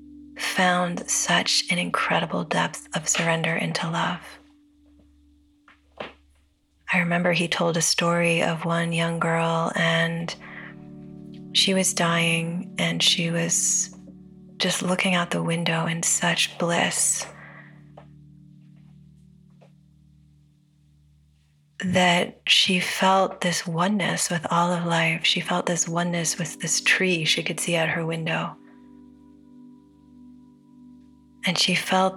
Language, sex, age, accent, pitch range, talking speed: English, female, 30-49, American, 165-185 Hz, 110 wpm